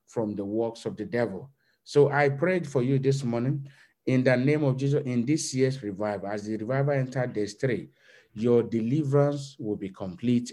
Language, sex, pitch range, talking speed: English, male, 120-145 Hz, 180 wpm